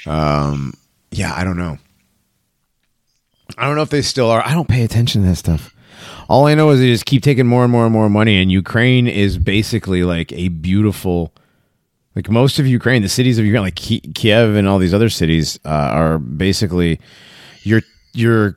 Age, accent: 30-49, American